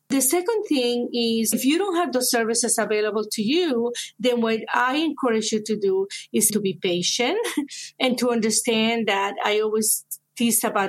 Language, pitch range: English, 210-260 Hz